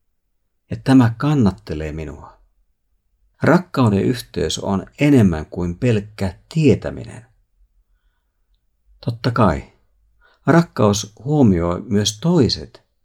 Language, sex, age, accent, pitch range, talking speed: Finnish, male, 50-69, native, 85-115 Hz, 80 wpm